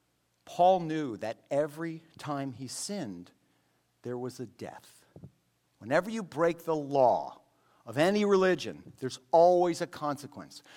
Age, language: 50-69, English